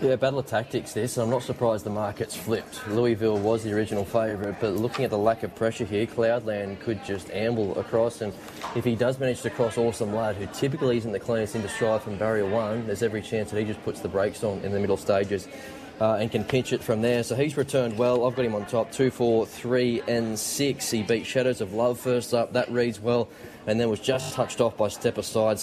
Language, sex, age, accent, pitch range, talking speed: English, male, 20-39, Australian, 105-120 Hz, 245 wpm